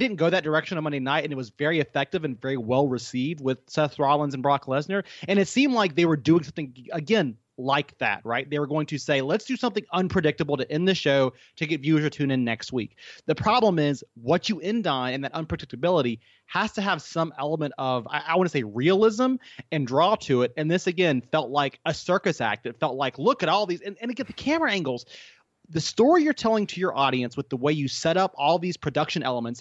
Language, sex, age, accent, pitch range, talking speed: English, male, 30-49, American, 140-195 Hz, 240 wpm